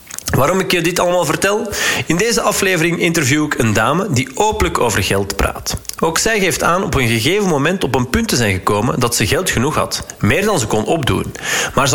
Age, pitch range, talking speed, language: 40-59, 120-190 Hz, 220 wpm, Dutch